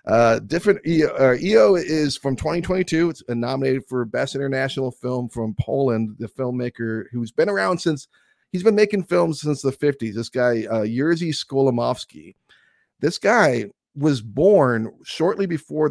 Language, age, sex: English, 40-59, male